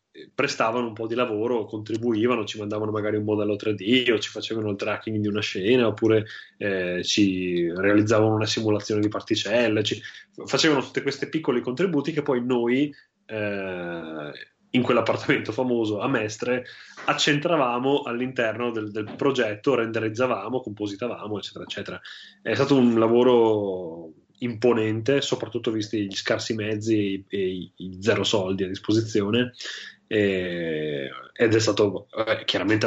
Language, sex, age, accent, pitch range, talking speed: Italian, male, 20-39, native, 105-125 Hz, 135 wpm